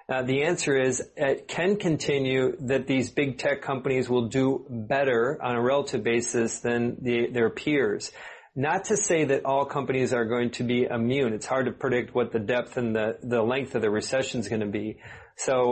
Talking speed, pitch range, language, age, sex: 200 wpm, 120-145 Hz, English, 40-59, male